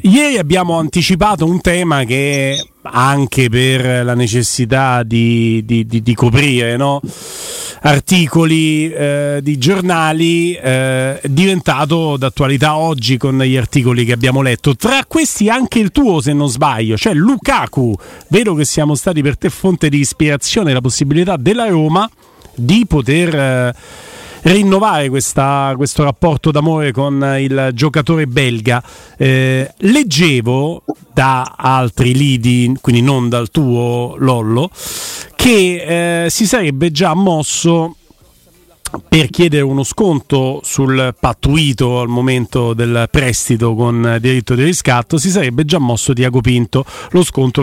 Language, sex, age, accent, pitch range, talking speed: Italian, male, 40-59, native, 130-170 Hz, 125 wpm